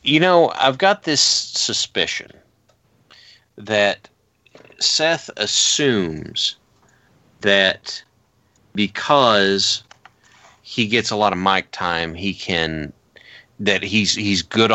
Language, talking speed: English, 100 wpm